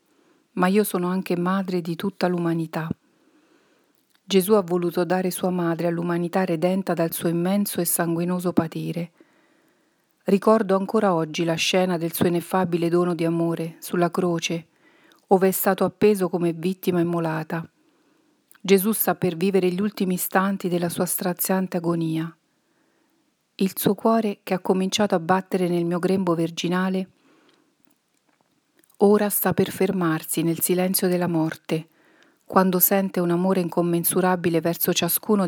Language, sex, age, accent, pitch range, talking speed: Italian, female, 40-59, native, 170-200 Hz, 135 wpm